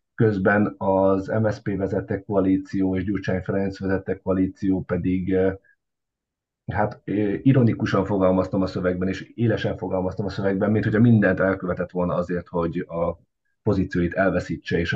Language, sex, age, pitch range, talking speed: Hungarian, male, 30-49, 90-105 Hz, 130 wpm